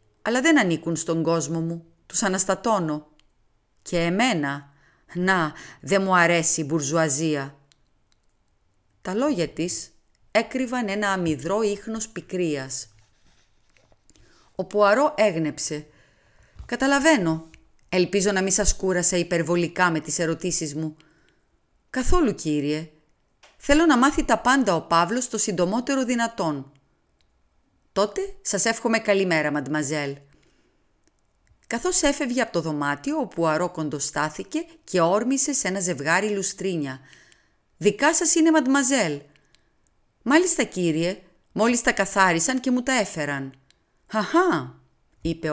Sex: female